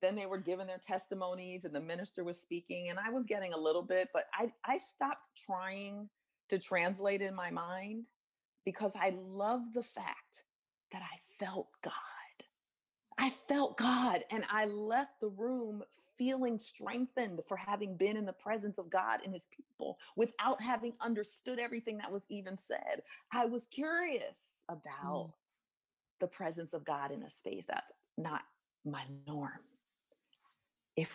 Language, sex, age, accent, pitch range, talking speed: English, female, 40-59, American, 150-240 Hz, 160 wpm